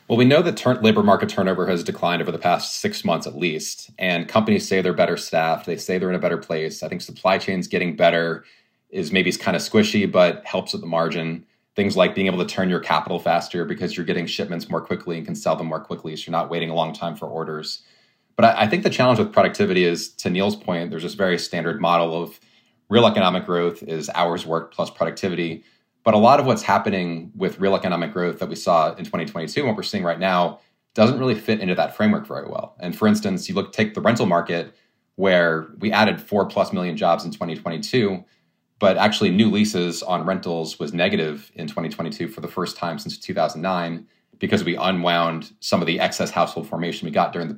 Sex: male